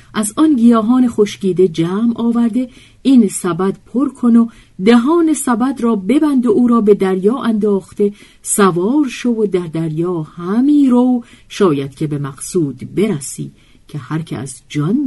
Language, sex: Persian, female